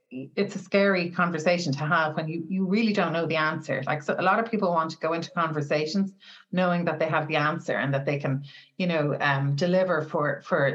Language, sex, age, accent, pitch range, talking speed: English, female, 30-49, Irish, 155-190 Hz, 230 wpm